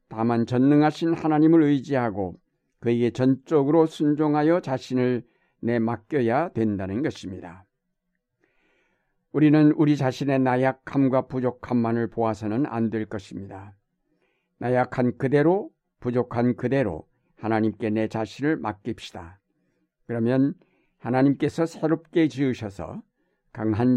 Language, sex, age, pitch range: Korean, male, 60-79, 110-145 Hz